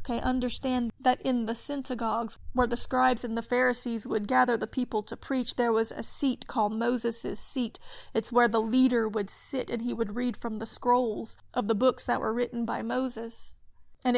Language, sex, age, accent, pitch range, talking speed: English, female, 30-49, American, 220-255 Hz, 200 wpm